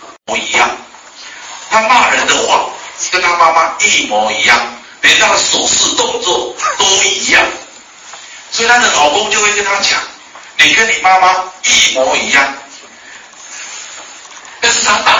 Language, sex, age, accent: Chinese, male, 50-69, native